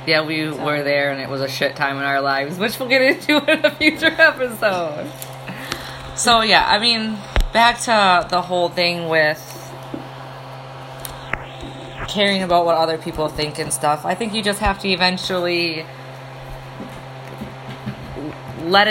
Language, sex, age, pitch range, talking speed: English, female, 20-39, 135-180 Hz, 150 wpm